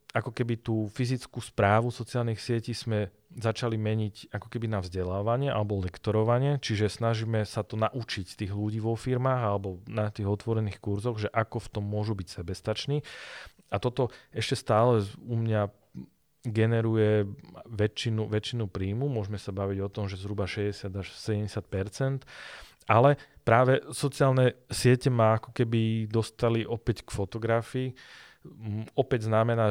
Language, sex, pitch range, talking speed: Slovak, male, 105-120 Hz, 140 wpm